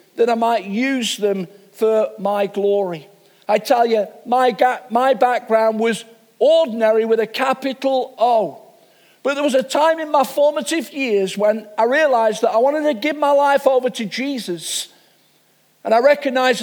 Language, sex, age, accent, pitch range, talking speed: English, male, 50-69, British, 205-260 Hz, 165 wpm